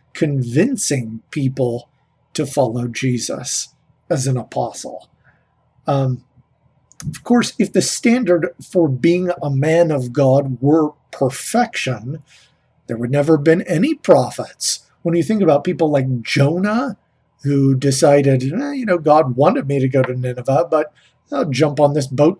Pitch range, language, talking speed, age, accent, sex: 135-175 Hz, English, 145 wpm, 40-59, American, male